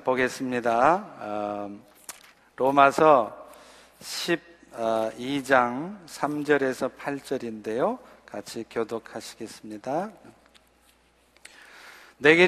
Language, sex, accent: Korean, male, native